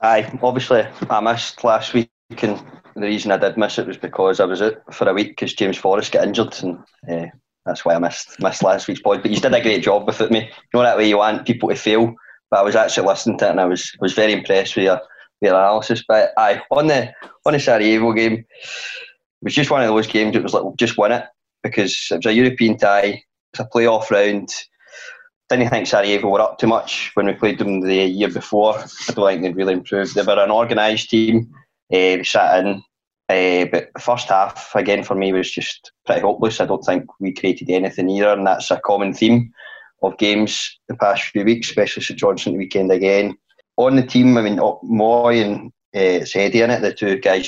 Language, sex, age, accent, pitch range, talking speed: English, male, 20-39, British, 95-115 Hz, 230 wpm